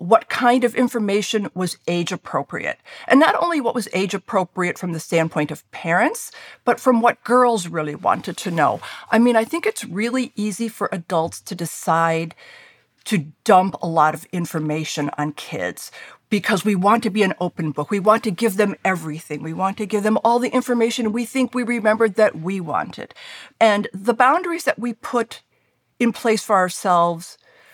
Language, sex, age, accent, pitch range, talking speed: English, female, 50-69, American, 175-235 Hz, 180 wpm